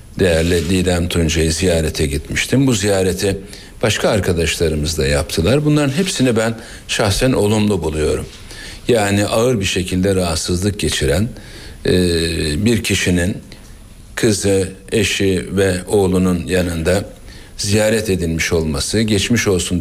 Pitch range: 90-115 Hz